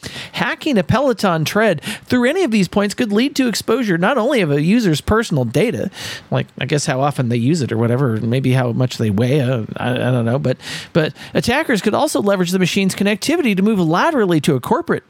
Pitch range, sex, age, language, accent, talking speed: 145-215 Hz, male, 40-59, English, American, 210 wpm